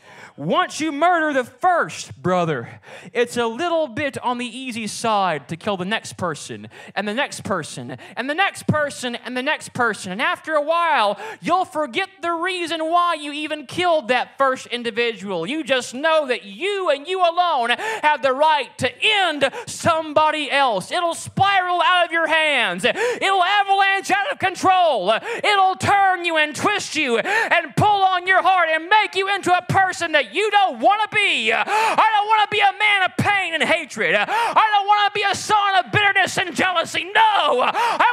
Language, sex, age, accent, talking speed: English, male, 20-39, American, 190 wpm